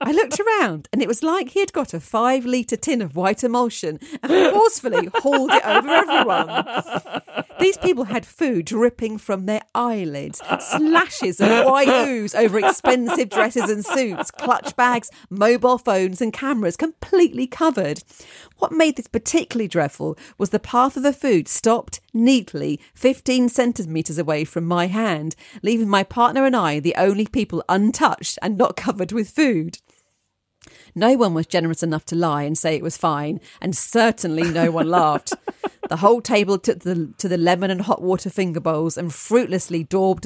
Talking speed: 165 wpm